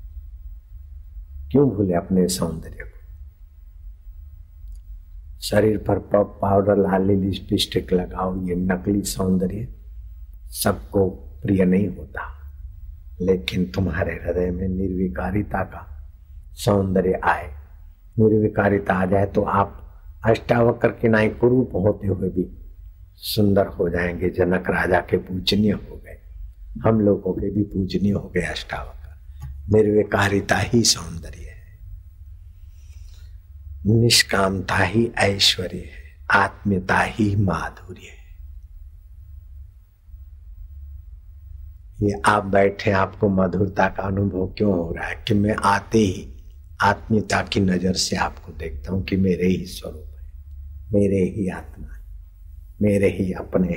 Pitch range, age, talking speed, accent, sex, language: 75-100 Hz, 60-79, 115 wpm, native, male, Hindi